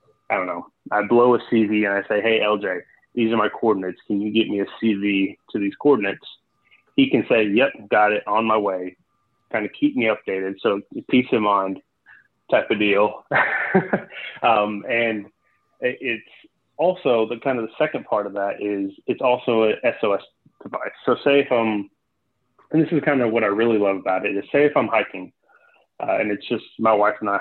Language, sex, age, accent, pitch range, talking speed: English, male, 30-49, American, 100-120 Hz, 200 wpm